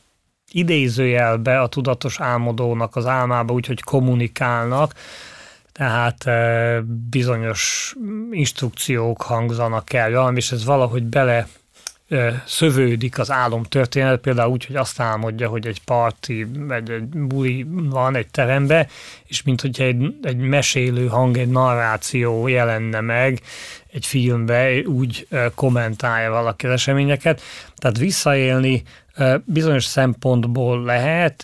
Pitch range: 120-135 Hz